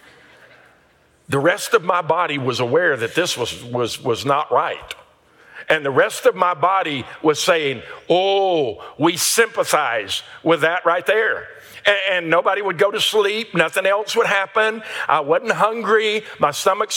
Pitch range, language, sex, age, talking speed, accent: 170-235 Hz, English, male, 50-69, 160 wpm, American